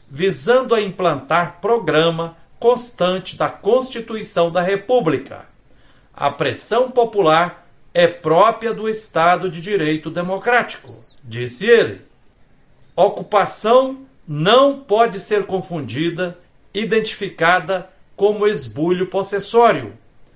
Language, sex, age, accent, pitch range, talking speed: Portuguese, male, 60-79, Brazilian, 165-220 Hz, 90 wpm